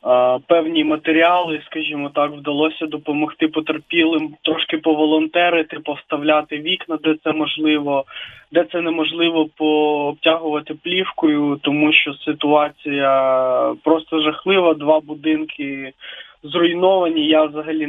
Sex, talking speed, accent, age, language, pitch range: male, 95 wpm, native, 20-39, Ukrainian, 145-165 Hz